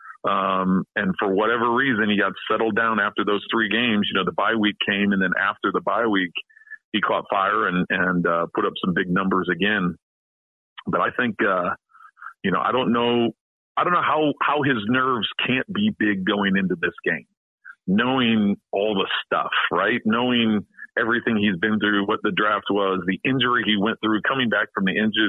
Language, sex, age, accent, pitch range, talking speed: English, male, 40-59, American, 95-115 Hz, 200 wpm